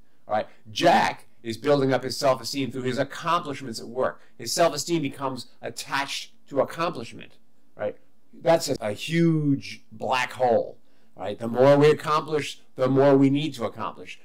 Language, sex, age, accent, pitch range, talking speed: English, male, 50-69, American, 120-165 Hz, 150 wpm